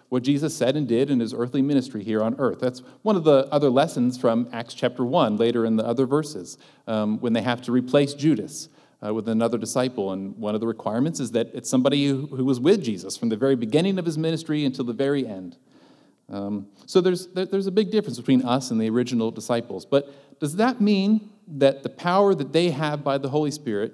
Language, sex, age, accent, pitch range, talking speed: English, male, 40-59, American, 120-155 Hz, 225 wpm